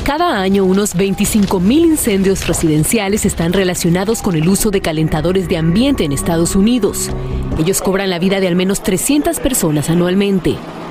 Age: 30-49